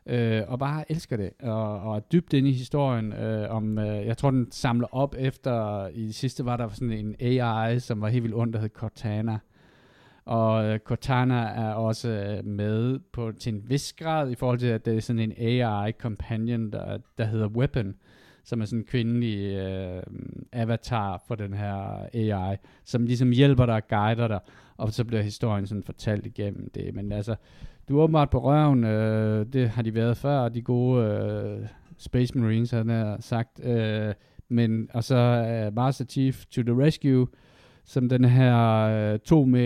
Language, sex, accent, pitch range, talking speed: Danish, male, native, 110-130 Hz, 180 wpm